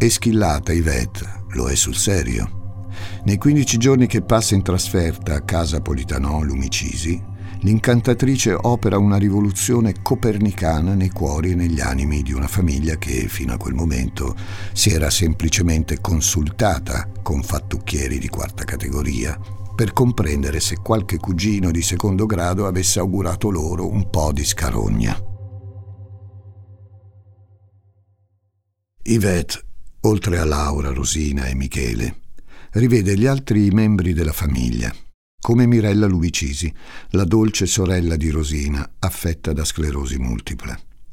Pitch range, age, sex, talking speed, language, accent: 80-100 Hz, 60-79, male, 125 wpm, Italian, native